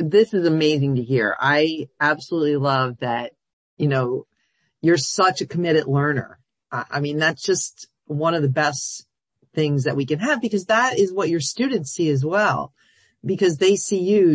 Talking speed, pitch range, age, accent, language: 175 wpm, 135-175 Hz, 40-59, American, English